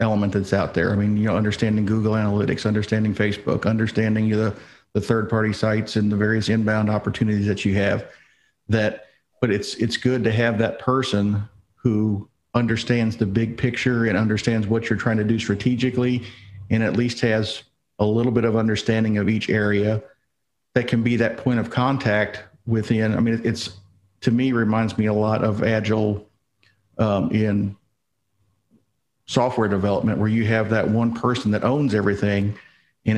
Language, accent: English, American